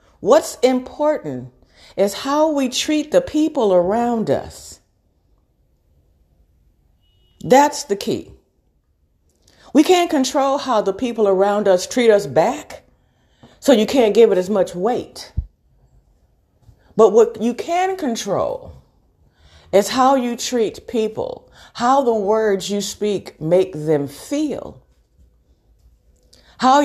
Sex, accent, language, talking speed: female, American, English, 115 wpm